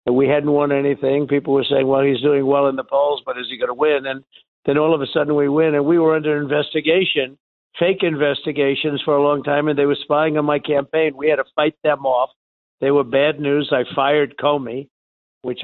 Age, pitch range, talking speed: 60-79, 135-155 Hz, 235 wpm